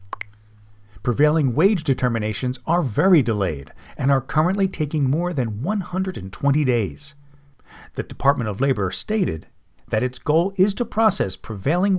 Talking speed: 130 wpm